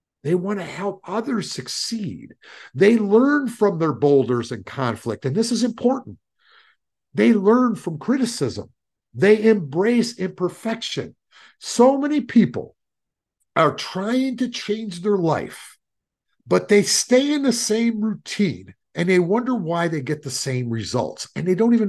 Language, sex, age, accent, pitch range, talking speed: English, male, 50-69, American, 145-215 Hz, 145 wpm